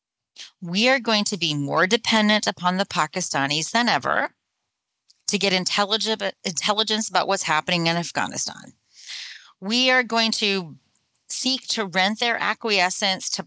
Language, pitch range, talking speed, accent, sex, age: English, 160-215 Hz, 135 wpm, American, female, 40-59